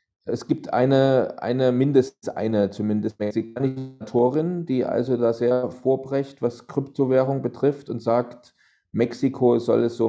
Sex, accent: male, German